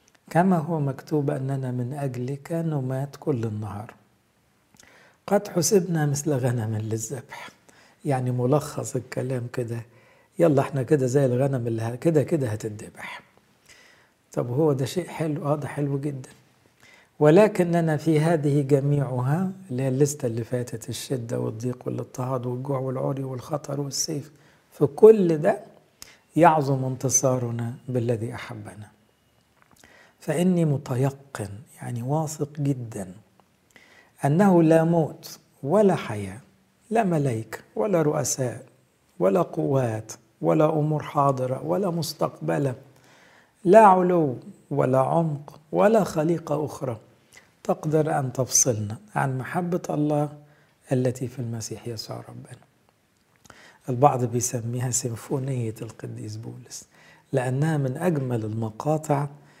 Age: 60-79